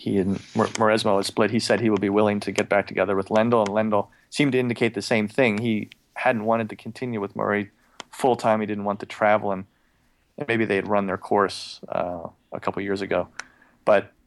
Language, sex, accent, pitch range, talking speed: English, male, American, 100-115 Hz, 220 wpm